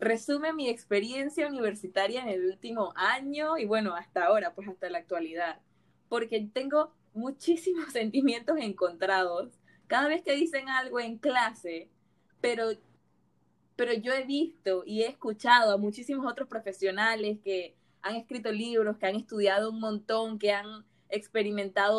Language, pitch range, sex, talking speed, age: Spanish, 200-265 Hz, female, 140 wpm, 20-39